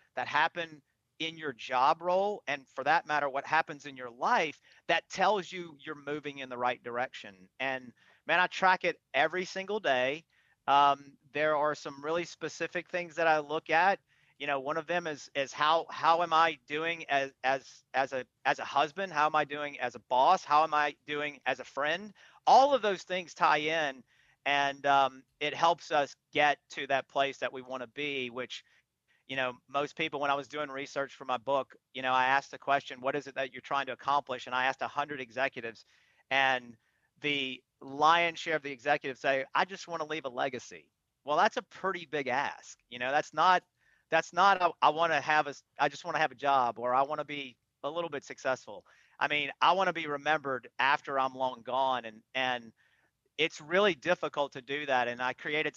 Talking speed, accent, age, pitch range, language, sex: 215 wpm, American, 40-59, 130-160 Hz, English, male